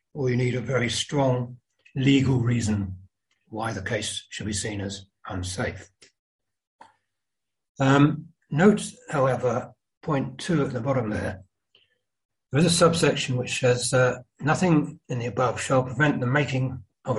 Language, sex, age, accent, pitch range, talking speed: English, male, 60-79, British, 105-135 Hz, 145 wpm